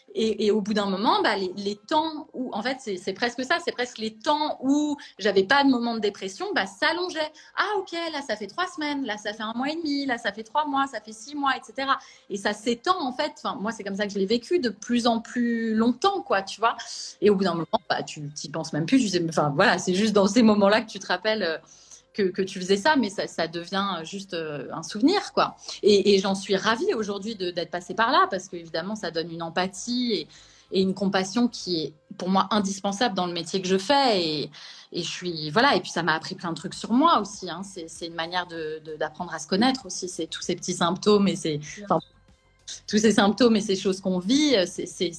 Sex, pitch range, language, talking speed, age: female, 180-245 Hz, French, 255 wpm, 30-49